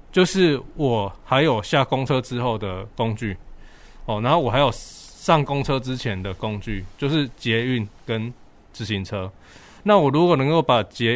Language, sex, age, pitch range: Chinese, male, 20-39, 105-135 Hz